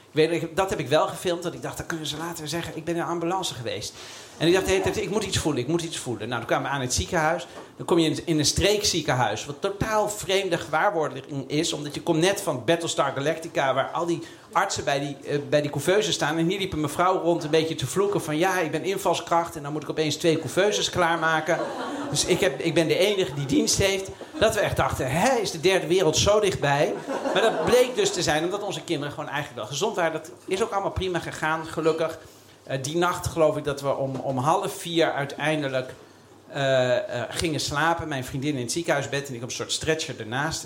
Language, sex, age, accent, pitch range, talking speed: Dutch, male, 50-69, Dutch, 130-165 Hz, 235 wpm